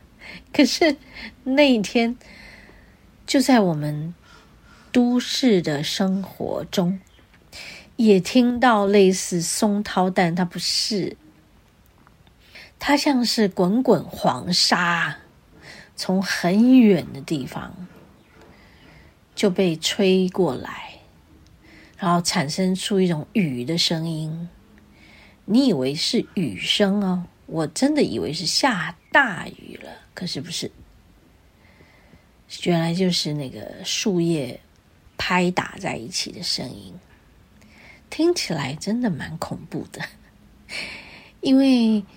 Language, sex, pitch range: Chinese, female, 160-220 Hz